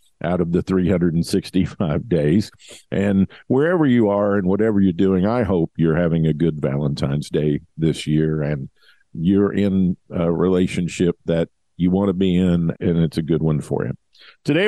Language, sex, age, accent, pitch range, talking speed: English, male, 50-69, American, 90-120 Hz, 170 wpm